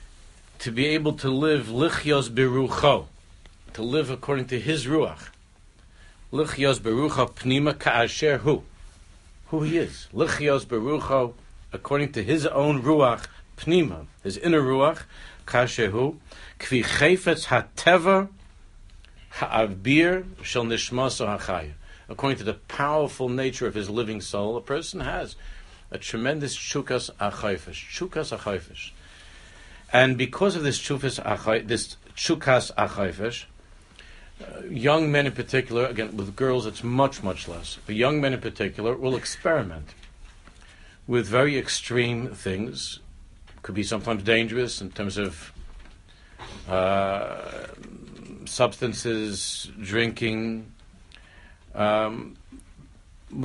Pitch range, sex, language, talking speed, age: 95-135 Hz, male, English, 110 wpm, 60-79